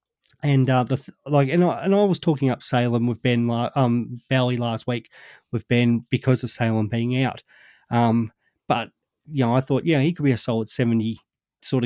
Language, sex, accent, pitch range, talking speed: English, male, Australian, 120-135 Hz, 210 wpm